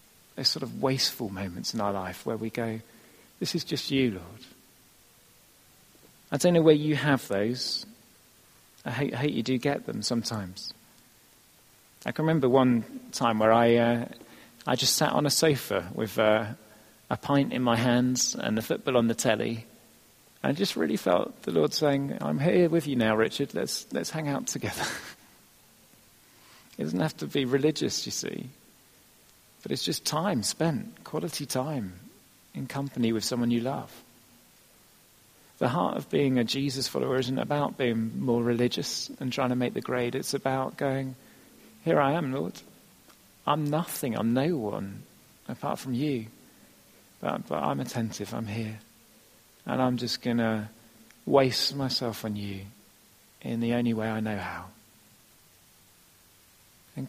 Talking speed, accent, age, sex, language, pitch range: 160 wpm, British, 40-59, male, English, 110-140 Hz